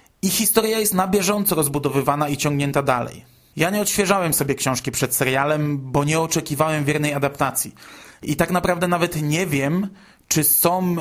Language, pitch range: Polish, 135-175 Hz